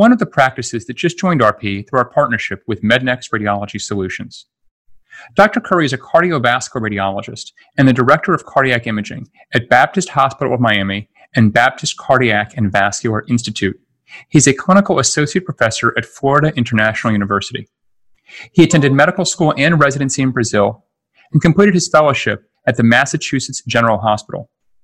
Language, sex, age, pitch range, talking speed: English, male, 30-49, 115-150 Hz, 155 wpm